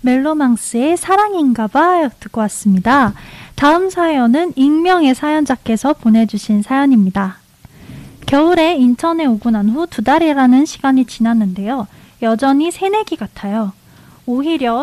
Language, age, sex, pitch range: Korean, 20-39, female, 225-305 Hz